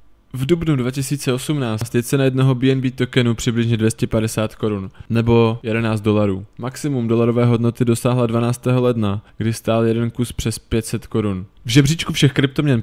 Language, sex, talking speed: Czech, male, 145 wpm